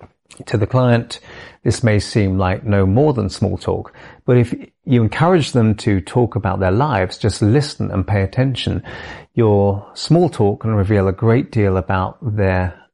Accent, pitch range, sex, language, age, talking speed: British, 95-120 Hz, male, English, 40-59, 170 wpm